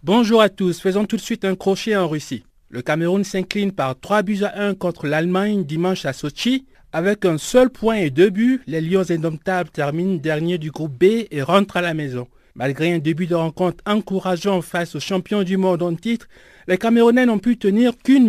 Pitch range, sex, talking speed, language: 160-210 Hz, male, 205 wpm, French